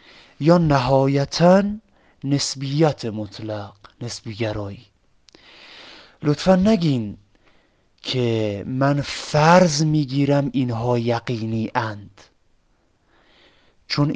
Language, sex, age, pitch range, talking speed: Persian, male, 30-49, 115-150 Hz, 65 wpm